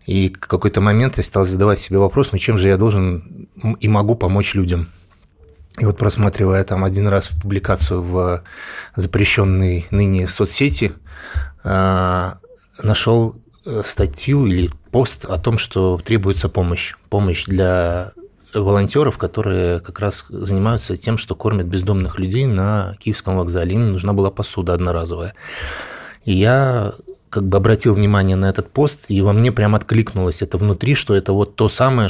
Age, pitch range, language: 20-39, 90-110 Hz, Russian